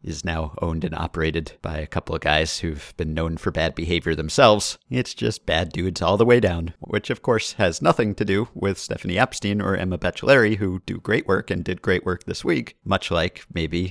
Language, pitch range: English, 80-105 Hz